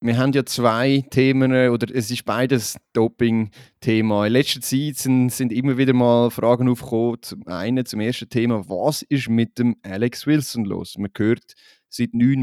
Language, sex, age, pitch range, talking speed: German, male, 30-49, 110-135 Hz, 175 wpm